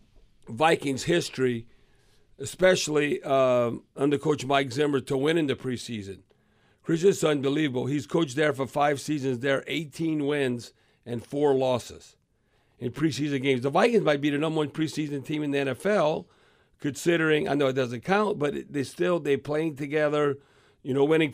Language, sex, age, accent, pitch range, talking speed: English, male, 50-69, American, 135-155 Hz, 165 wpm